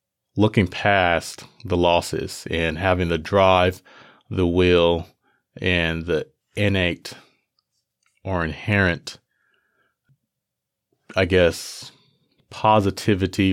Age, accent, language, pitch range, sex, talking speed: 30-49, American, English, 80-100 Hz, male, 80 wpm